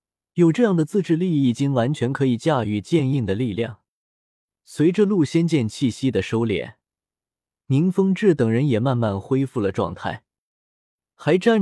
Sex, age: male, 20-39